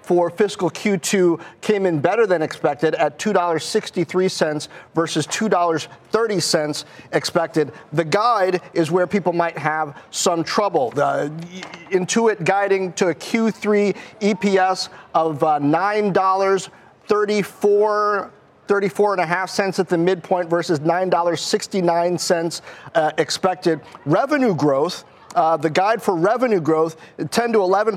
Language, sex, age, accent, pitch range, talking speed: English, male, 40-59, American, 165-195 Hz, 110 wpm